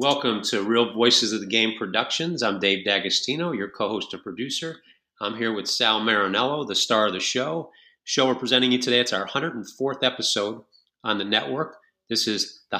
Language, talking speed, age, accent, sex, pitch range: English, 190 wpm, 40-59, American, male, 105-125 Hz